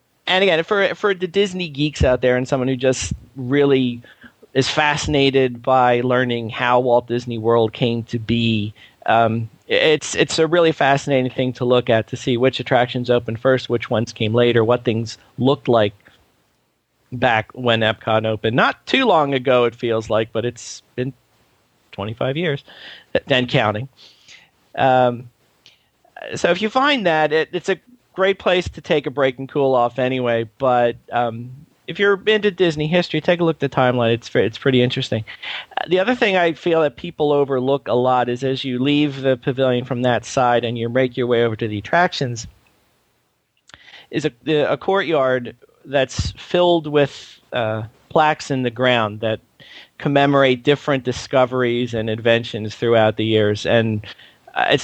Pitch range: 115-145 Hz